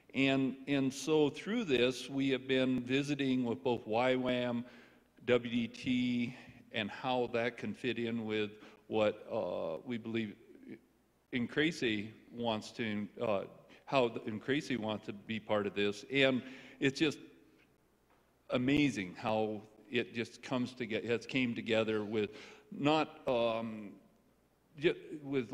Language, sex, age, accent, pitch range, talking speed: English, male, 50-69, American, 115-130 Hz, 125 wpm